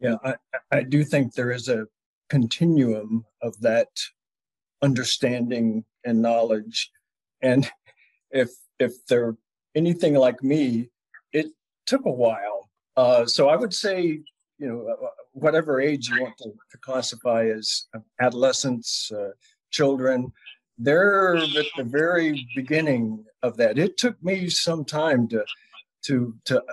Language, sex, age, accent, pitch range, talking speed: English, male, 50-69, American, 120-155 Hz, 130 wpm